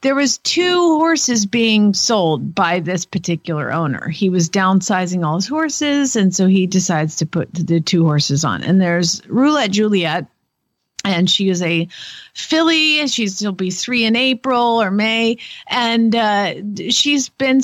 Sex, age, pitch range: female, 50-69, 185-250 Hz